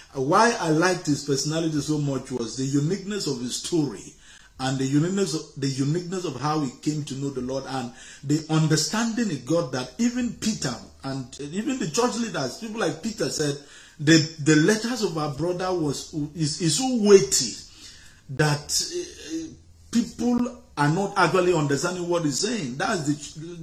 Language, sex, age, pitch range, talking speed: English, male, 50-69, 135-180 Hz, 170 wpm